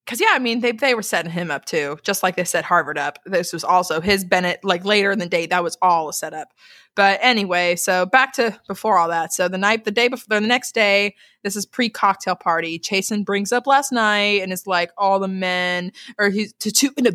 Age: 20-39